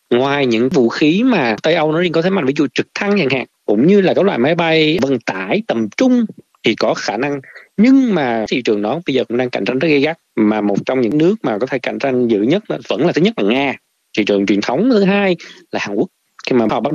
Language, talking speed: Vietnamese, 280 wpm